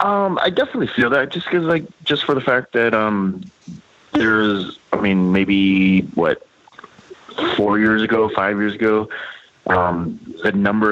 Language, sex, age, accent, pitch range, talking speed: English, male, 30-49, American, 90-105 Hz, 155 wpm